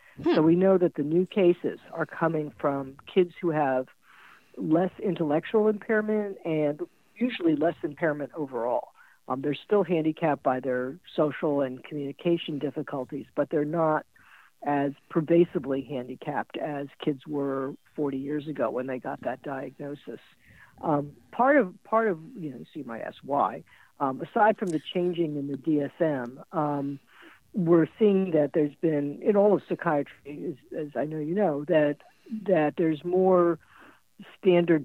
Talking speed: 150 wpm